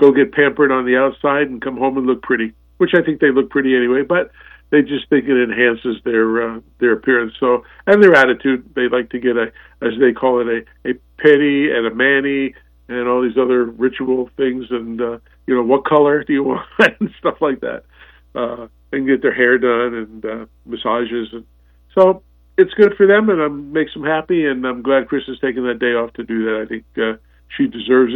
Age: 50-69